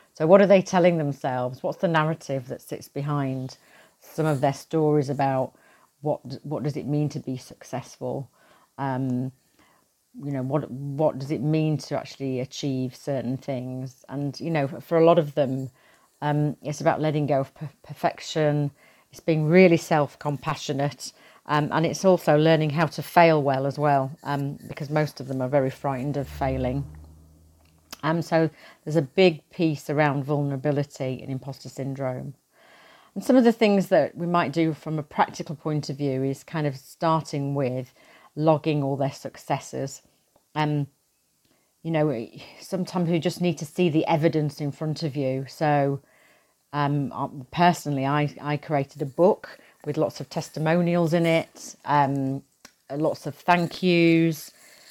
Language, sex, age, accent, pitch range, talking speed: English, female, 40-59, British, 135-160 Hz, 160 wpm